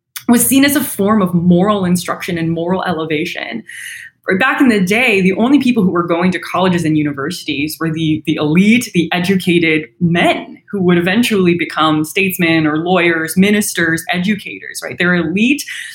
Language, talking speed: English, 165 wpm